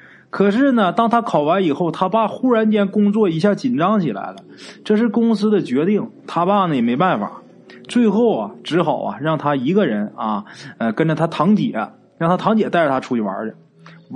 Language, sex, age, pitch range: Chinese, male, 20-39, 155-225 Hz